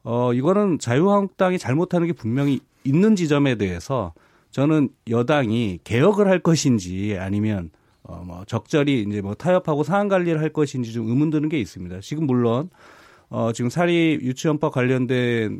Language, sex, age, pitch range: Korean, male, 30-49, 115-170 Hz